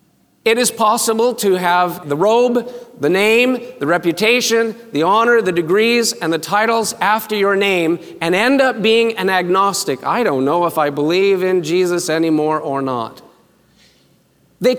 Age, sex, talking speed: 40-59, male, 160 wpm